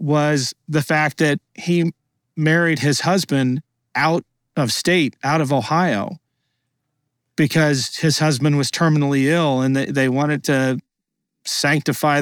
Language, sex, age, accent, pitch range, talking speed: English, male, 40-59, American, 125-150 Hz, 125 wpm